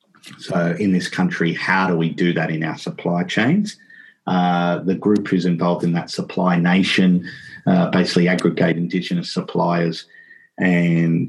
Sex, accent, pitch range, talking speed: male, Australian, 85-95 Hz, 150 wpm